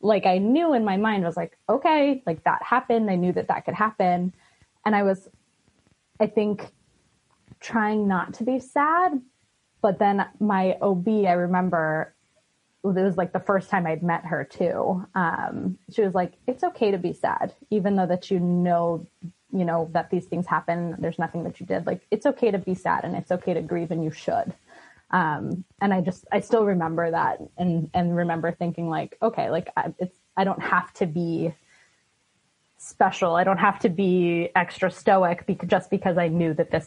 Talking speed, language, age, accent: 195 wpm, English, 20-39, American